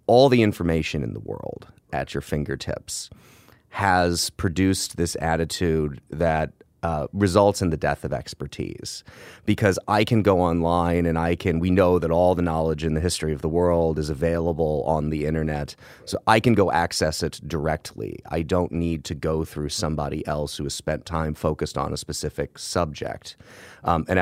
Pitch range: 80-90 Hz